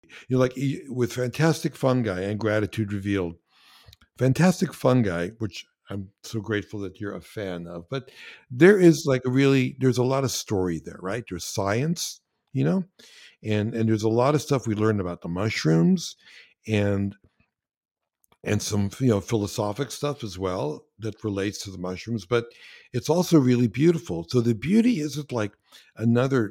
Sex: male